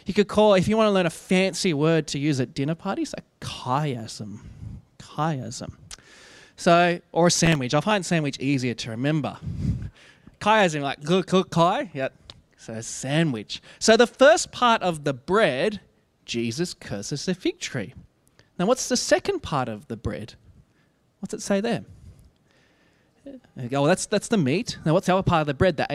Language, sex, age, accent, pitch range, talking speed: English, male, 20-39, Australian, 135-200 Hz, 185 wpm